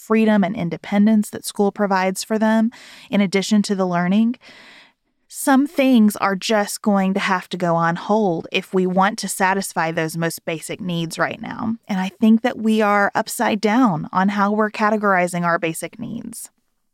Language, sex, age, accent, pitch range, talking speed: English, female, 30-49, American, 170-220 Hz, 175 wpm